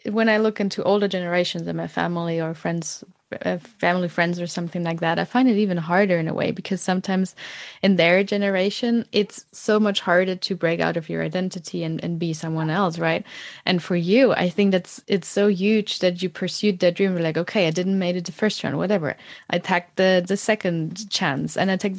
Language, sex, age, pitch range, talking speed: German, female, 10-29, 175-205 Hz, 220 wpm